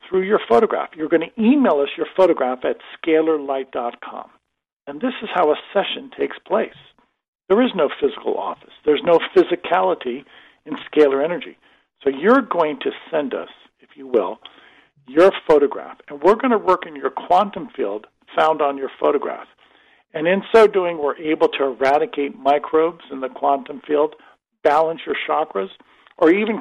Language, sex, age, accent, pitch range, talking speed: English, male, 50-69, American, 150-230 Hz, 165 wpm